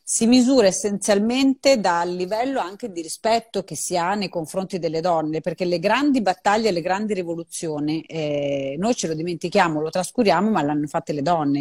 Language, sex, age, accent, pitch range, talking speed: Italian, female, 30-49, native, 165-230 Hz, 175 wpm